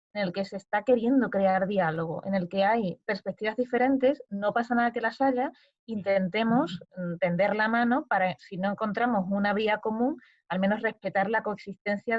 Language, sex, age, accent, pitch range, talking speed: Spanish, female, 20-39, Spanish, 185-230 Hz, 175 wpm